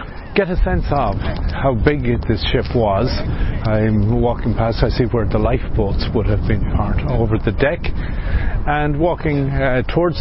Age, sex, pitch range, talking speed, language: 50-69, male, 90-130 Hz, 165 wpm, English